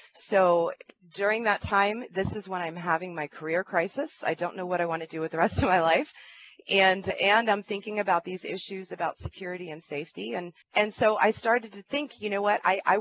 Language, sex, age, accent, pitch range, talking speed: English, female, 30-49, American, 165-210 Hz, 225 wpm